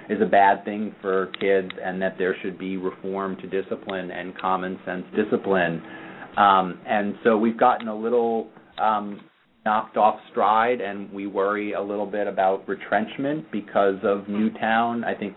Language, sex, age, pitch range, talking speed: English, male, 30-49, 95-110 Hz, 165 wpm